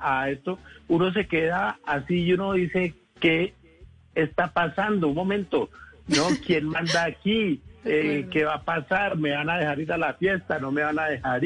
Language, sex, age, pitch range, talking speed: English, male, 60-79, 140-170 Hz, 190 wpm